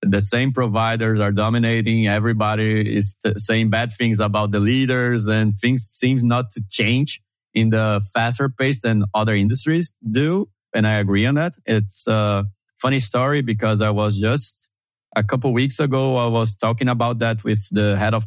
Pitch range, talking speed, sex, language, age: 105-125 Hz, 180 wpm, male, English, 20-39